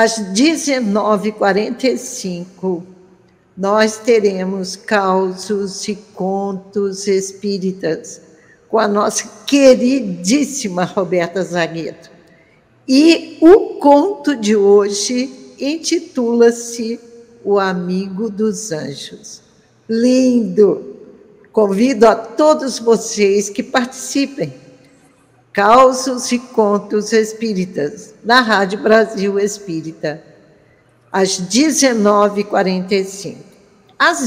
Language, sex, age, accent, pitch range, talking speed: Portuguese, female, 60-79, Brazilian, 195-240 Hz, 75 wpm